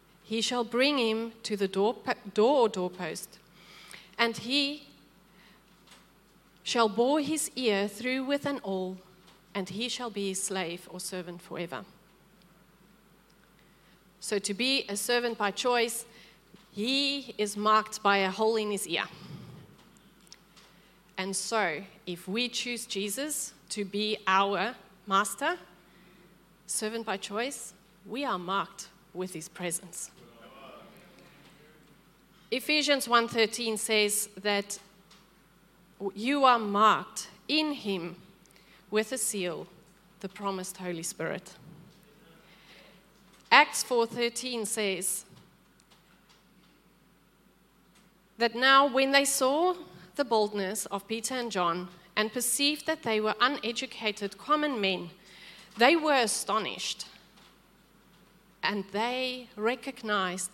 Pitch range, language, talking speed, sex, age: 190-235 Hz, English, 105 wpm, female, 40-59